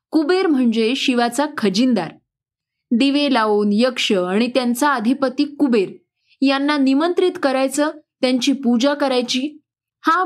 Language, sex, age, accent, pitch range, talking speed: Marathi, female, 20-39, native, 225-290 Hz, 105 wpm